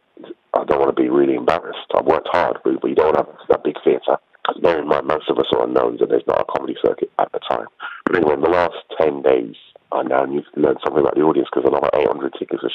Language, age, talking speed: English, 40-59, 255 wpm